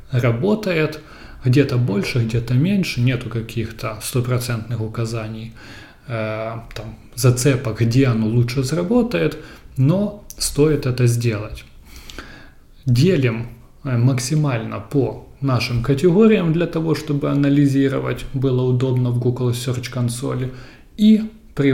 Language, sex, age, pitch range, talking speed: Russian, male, 20-39, 115-145 Hz, 100 wpm